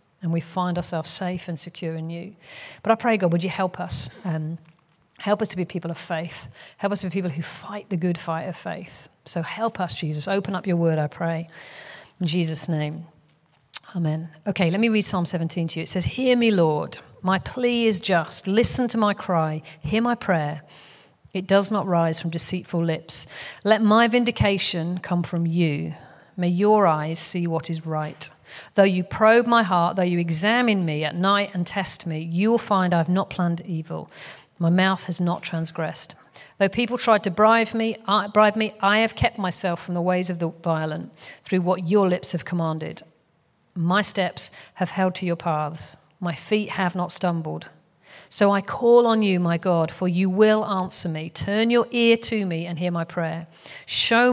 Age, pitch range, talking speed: 40-59, 165-200 Hz, 195 wpm